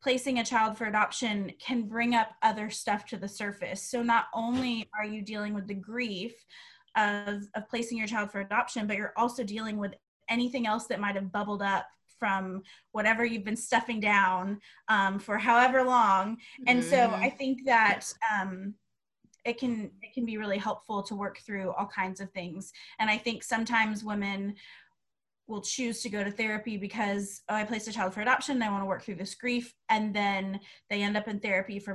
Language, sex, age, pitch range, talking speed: English, female, 20-39, 200-235 Hz, 195 wpm